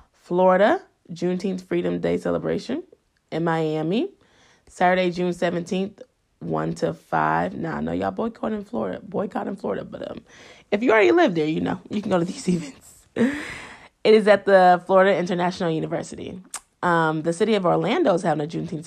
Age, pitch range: 20-39, 160-195 Hz